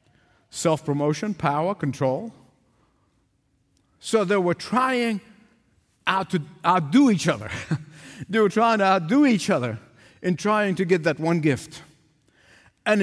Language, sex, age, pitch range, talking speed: English, male, 50-69, 140-195 Hz, 125 wpm